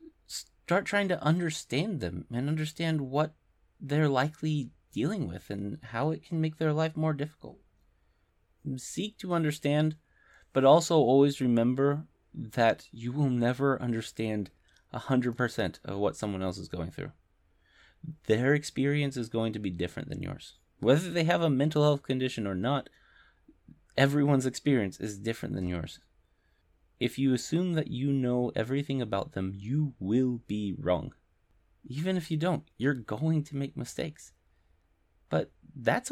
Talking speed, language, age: 150 wpm, English, 30-49